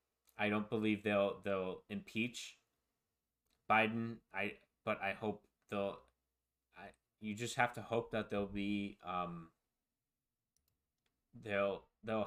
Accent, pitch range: American, 90-110 Hz